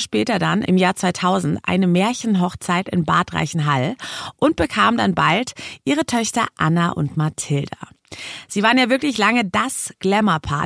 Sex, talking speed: female, 145 wpm